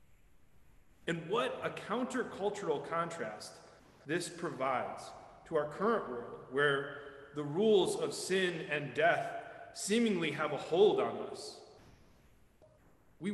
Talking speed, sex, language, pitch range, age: 110 wpm, male, English, 150-205 Hz, 30-49